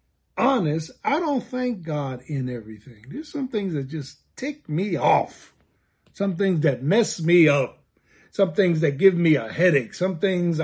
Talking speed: 170 wpm